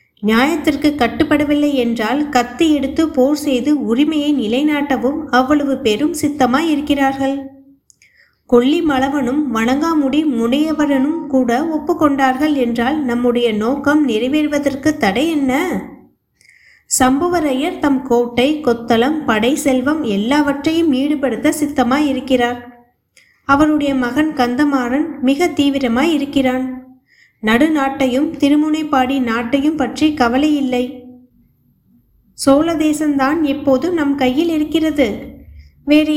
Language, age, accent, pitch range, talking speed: Tamil, 20-39, native, 255-300 Hz, 80 wpm